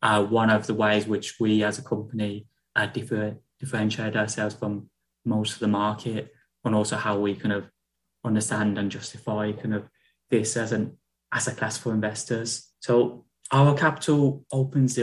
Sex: male